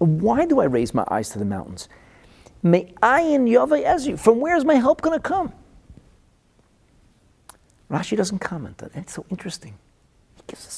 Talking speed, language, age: 180 wpm, English, 40-59